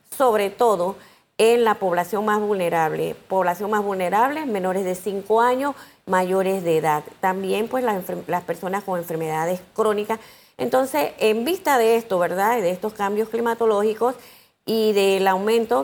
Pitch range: 185-220 Hz